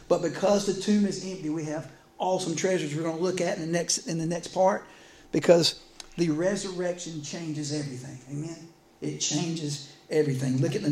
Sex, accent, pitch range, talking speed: male, American, 140-165 Hz, 185 wpm